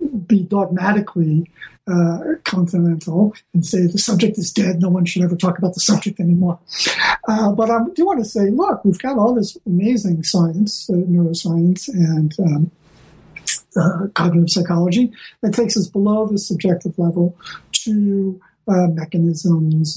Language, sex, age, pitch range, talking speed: English, male, 50-69, 170-205 Hz, 150 wpm